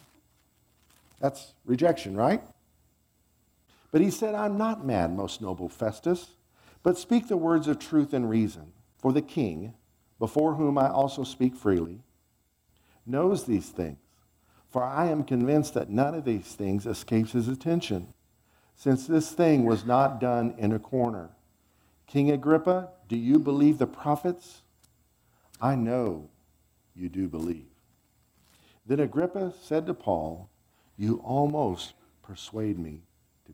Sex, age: male, 50-69